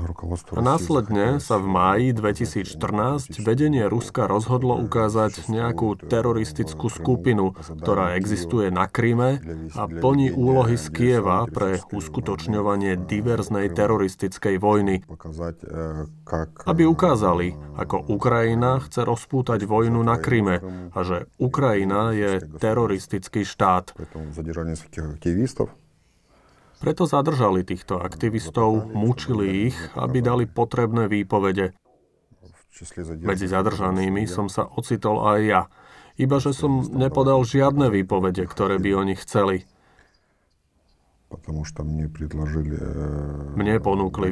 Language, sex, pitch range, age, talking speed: Slovak, male, 90-120 Hz, 30-49, 95 wpm